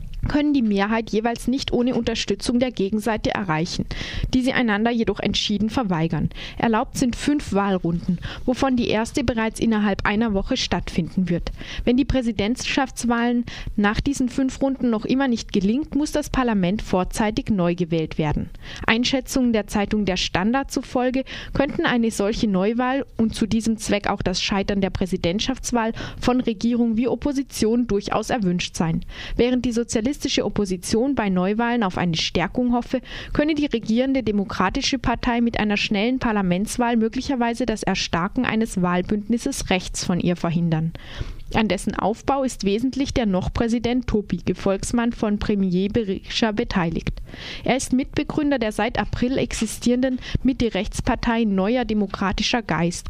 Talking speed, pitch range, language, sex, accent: 140 wpm, 195-250 Hz, German, female, German